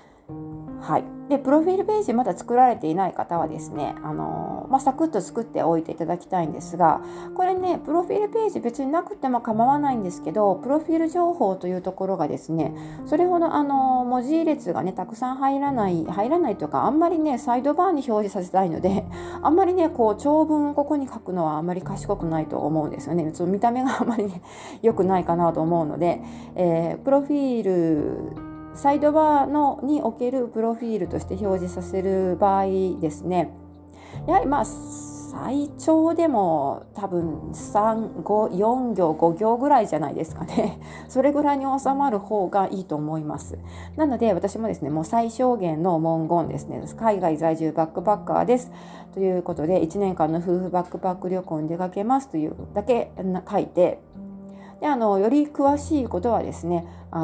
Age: 40-59